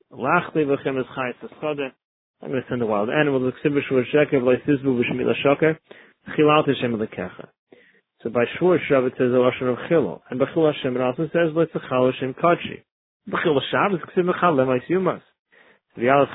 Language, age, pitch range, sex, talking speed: English, 30-49, 125-150 Hz, male, 65 wpm